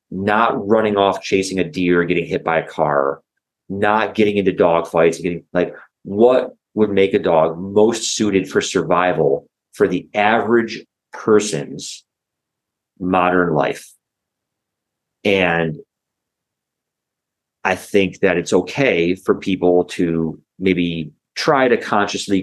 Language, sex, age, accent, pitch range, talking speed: English, male, 40-59, American, 85-105 Hz, 130 wpm